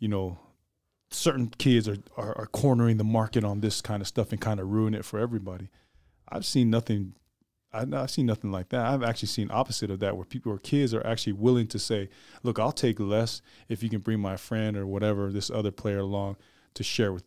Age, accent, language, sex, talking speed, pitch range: 20-39, American, English, male, 225 wpm, 100-120 Hz